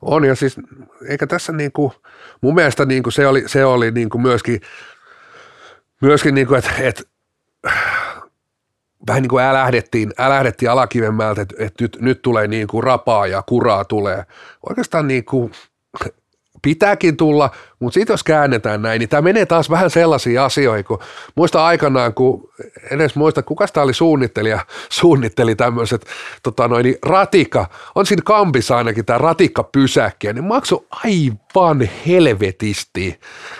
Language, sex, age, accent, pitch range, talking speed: Finnish, male, 30-49, native, 120-160 Hz, 130 wpm